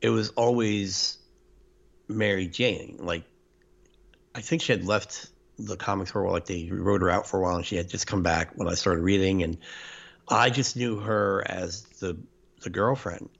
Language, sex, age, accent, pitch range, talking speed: English, male, 60-79, American, 90-115 Hz, 195 wpm